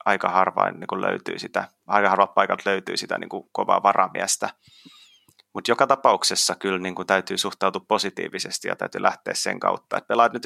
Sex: male